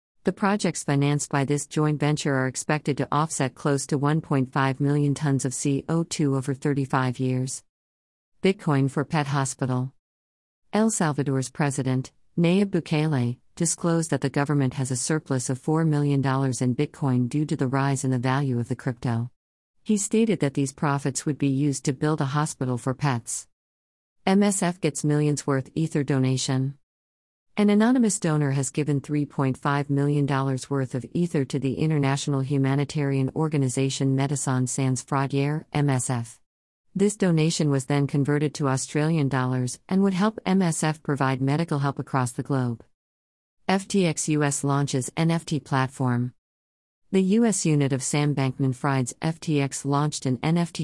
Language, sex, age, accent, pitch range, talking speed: English, female, 50-69, American, 130-155 Hz, 145 wpm